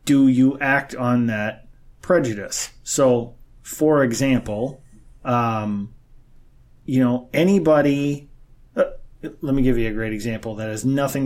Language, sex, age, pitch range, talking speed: English, male, 30-49, 120-135 Hz, 130 wpm